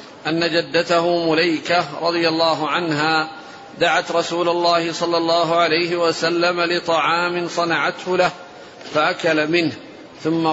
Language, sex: Arabic, male